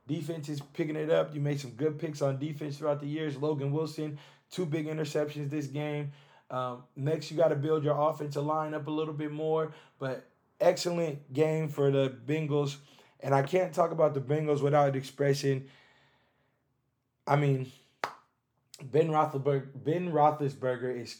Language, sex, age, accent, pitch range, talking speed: English, male, 20-39, American, 130-150 Hz, 160 wpm